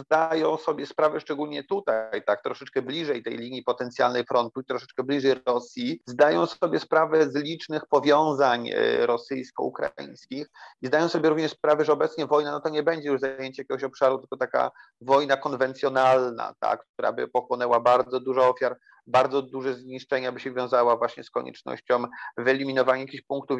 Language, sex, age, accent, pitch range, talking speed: Polish, male, 30-49, native, 130-150 Hz, 155 wpm